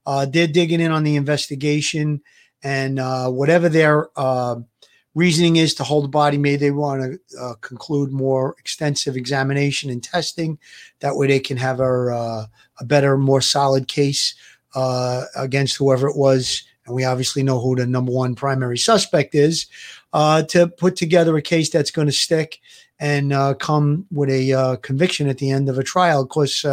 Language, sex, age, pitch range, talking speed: English, male, 40-59, 135-160 Hz, 185 wpm